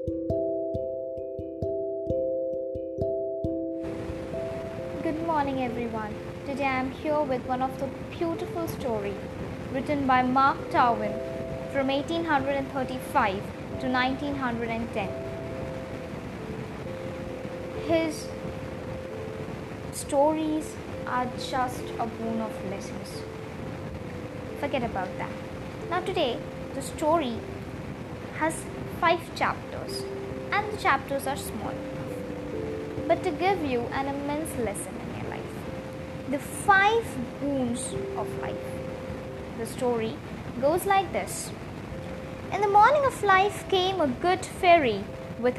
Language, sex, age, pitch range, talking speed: English, female, 20-39, 245-335 Hz, 100 wpm